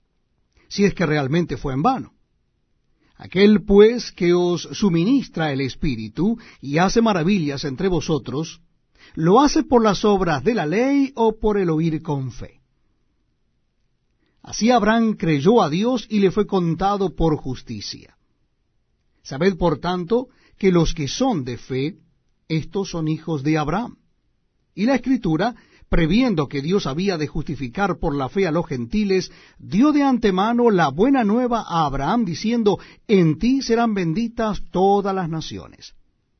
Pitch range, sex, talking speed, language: 155-215 Hz, male, 145 wpm, Spanish